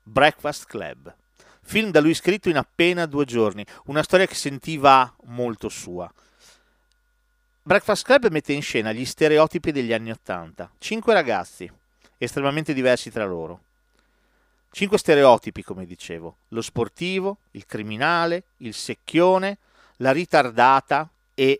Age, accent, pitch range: 40-59, native, 120-180 Hz